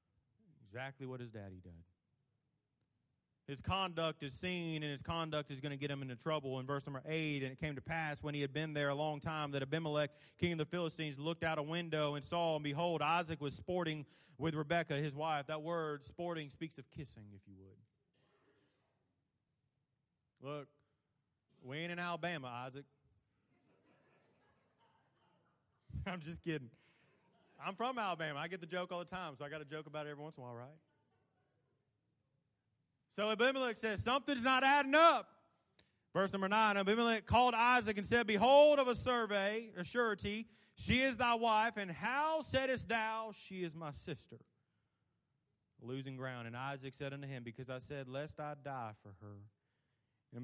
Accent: American